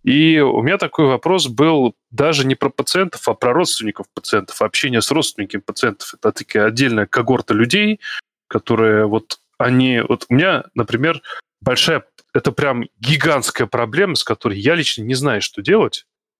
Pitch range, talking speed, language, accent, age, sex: 115-150 Hz, 155 wpm, Russian, native, 20-39, male